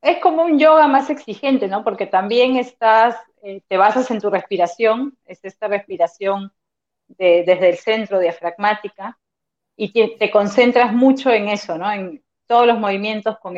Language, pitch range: Spanish, 185-230 Hz